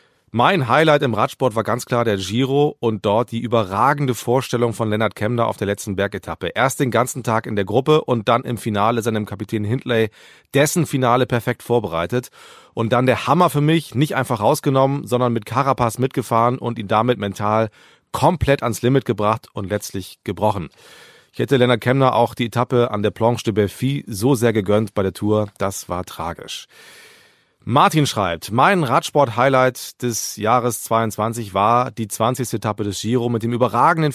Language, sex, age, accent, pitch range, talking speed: German, male, 40-59, German, 110-130 Hz, 175 wpm